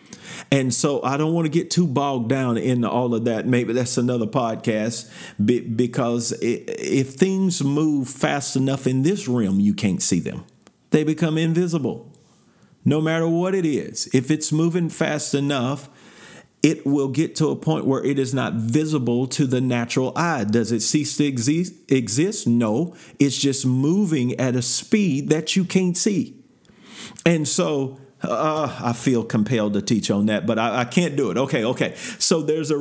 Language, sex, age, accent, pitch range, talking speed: English, male, 40-59, American, 120-165 Hz, 175 wpm